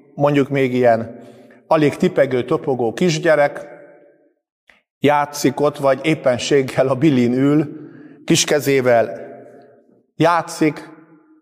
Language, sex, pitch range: Hungarian, male, 120-160 Hz